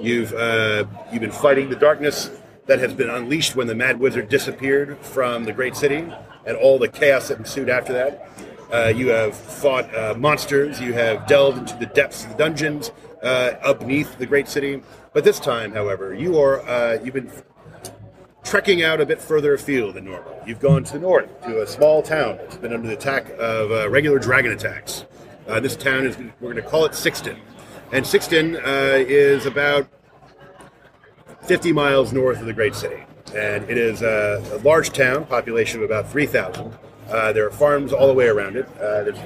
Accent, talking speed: American, 195 wpm